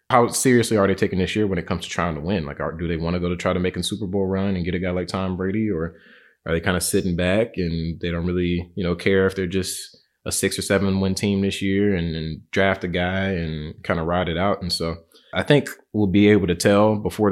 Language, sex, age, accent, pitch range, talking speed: English, male, 20-39, American, 85-95 Hz, 285 wpm